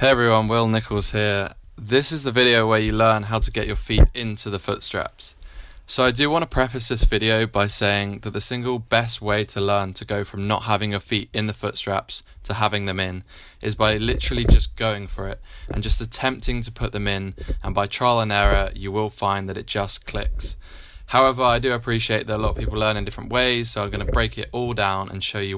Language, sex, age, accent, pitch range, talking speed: English, male, 20-39, British, 100-120 Hz, 240 wpm